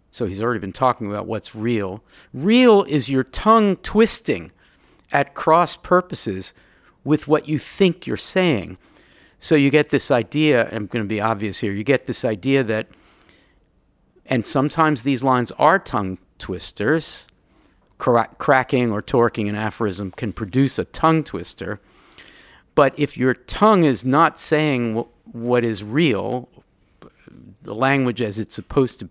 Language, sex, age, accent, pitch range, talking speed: English, male, 50-69, American, 110-145 Hz, 150 wpm